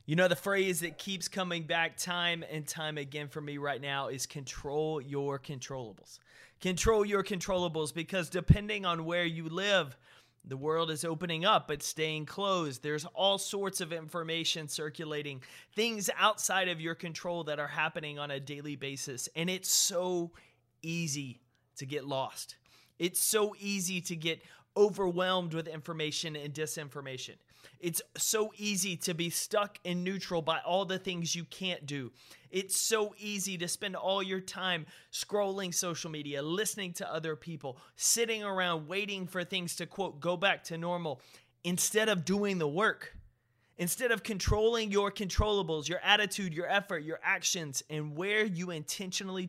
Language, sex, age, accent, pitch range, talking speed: English, male, 30-49, American, 150-190 Hz, 160 wpm